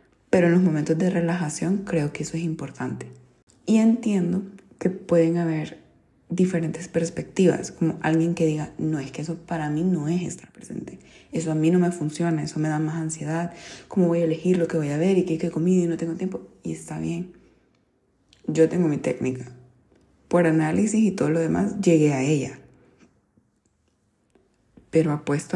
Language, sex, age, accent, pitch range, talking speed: Spanish, female, 20-39, Venezuelan, 155-180 Hz, 185 wpm